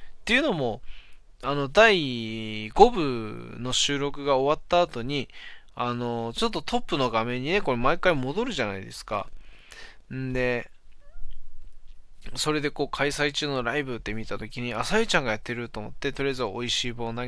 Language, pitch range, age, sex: Japanese, 110-145 Hz, 20-39, male